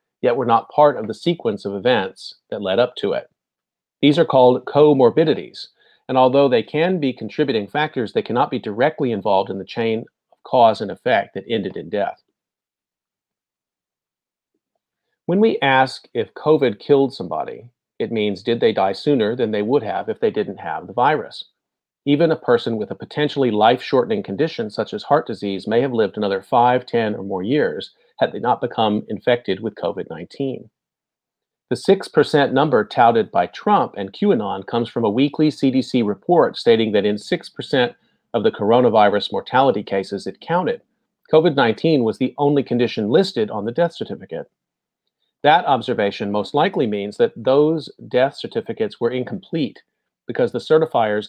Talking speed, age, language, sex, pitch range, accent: 165 wpm, 40-59, English, male, 110-150 Hz, American